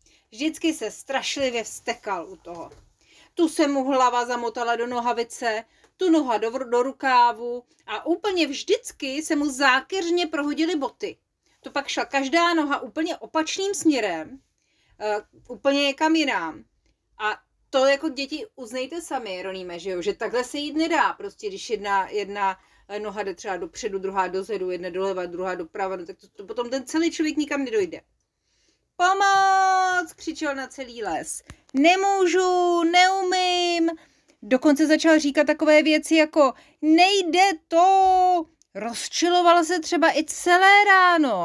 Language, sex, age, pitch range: Czech, female, 30-49, 220-330 Hz